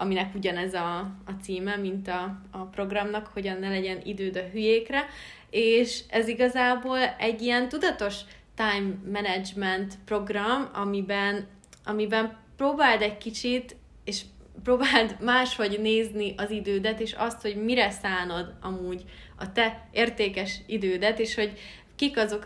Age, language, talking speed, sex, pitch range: 20-39, Hungarian, 130 wpm, female, 190-220 Hz